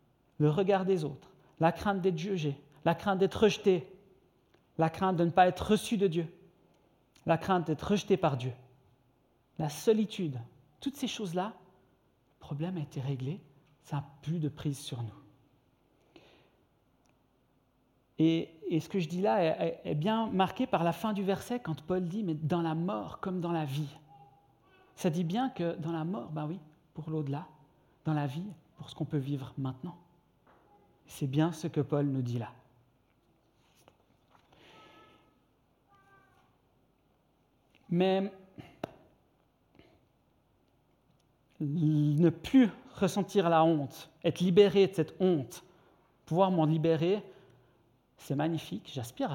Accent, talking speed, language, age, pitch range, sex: French, 140 wpm, French, 50-69, 145-190 Hz, male